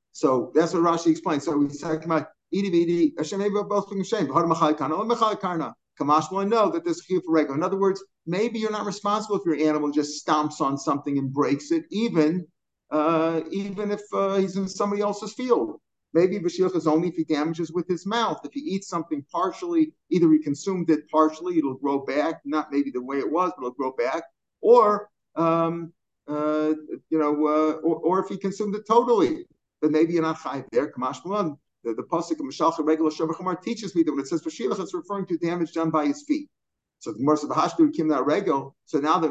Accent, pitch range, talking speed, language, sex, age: American, 155-195 Hz, 185 wpm, English, male, 50-69